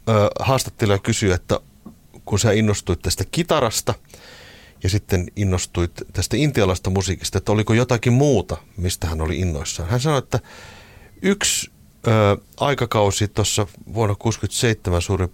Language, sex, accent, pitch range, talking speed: Finnish, male, native, 85-105 Hz, 125 wpm